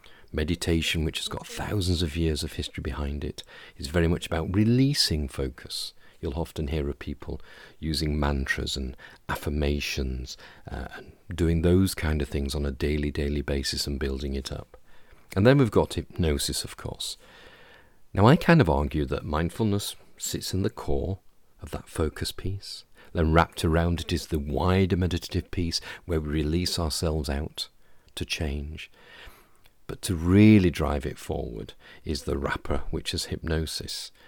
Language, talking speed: English, 160 wpm